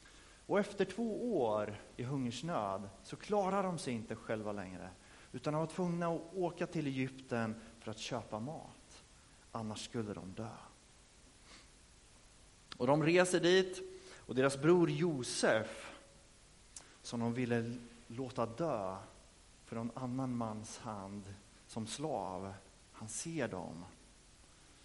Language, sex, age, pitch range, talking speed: Swedish, male, 30-49, 110-155 Hz, 125 wpm